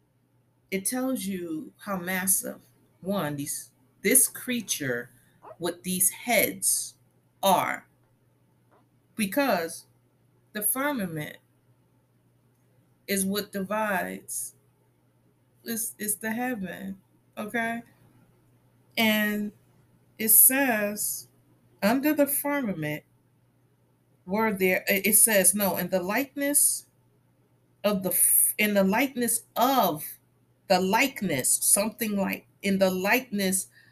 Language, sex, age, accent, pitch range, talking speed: English, female, 30-49, American, 140-220 Hz, 90 wpm